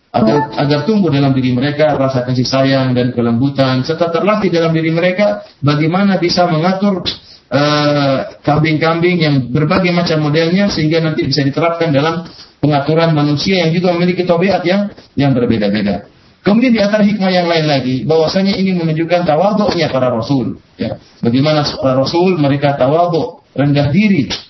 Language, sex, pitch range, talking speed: Malay, male, 145-200 Hz, 145 wpm